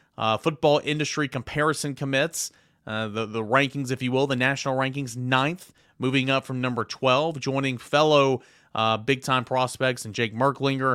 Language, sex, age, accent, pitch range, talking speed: English, male, 30-49, American, 120-140 Hz, 160 wpm